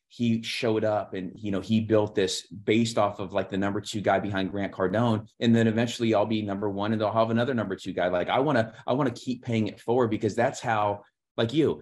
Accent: American